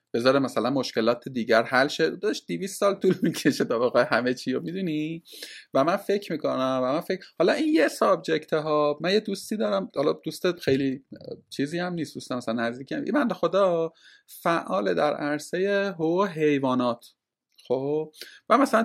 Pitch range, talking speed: 130-185 Hz, 165 wpm